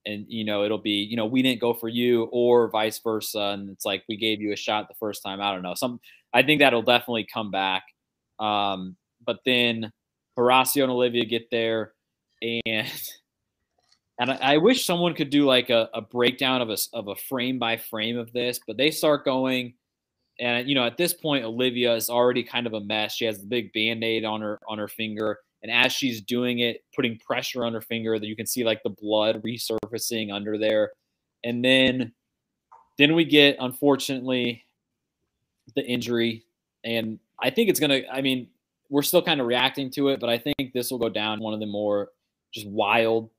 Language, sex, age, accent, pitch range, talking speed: English, male, 20-39, American, 110-130 Hz, 205 wpm